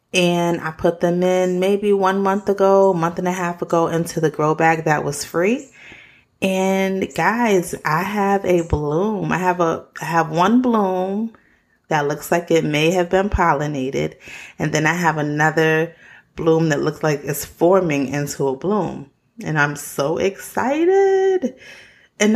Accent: American